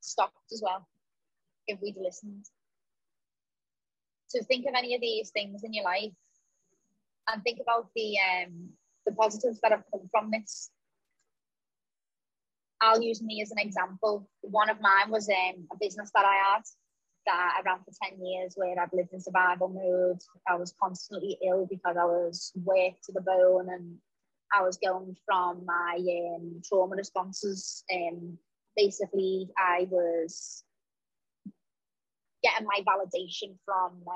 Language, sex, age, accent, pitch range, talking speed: English, female, 20-39, British, 180-200 Hz, 150 wpm